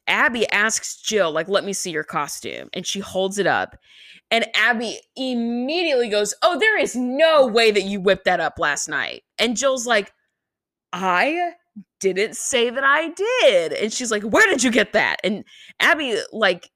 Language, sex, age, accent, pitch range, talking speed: English, female, 20-39, American, 190-250 Hz, 180 wpm